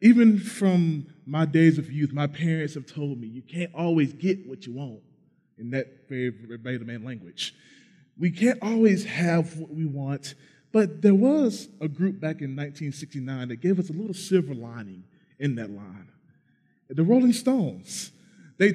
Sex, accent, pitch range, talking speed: male, American, 130-195 Hz, 170 wpm